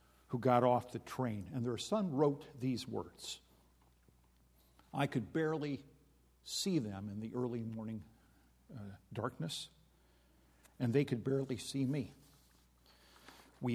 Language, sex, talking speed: English, male, 125 wpm